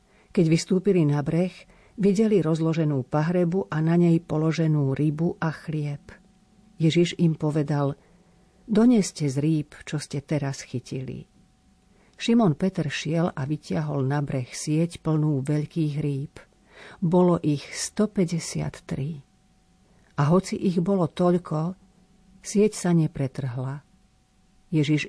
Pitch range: 145-185 Hz